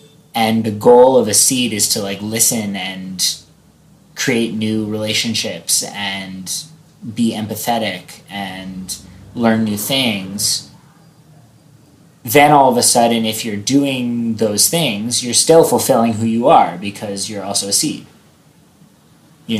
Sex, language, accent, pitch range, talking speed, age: male, English, American, 105-125 Hz, 130 wpm, 20-39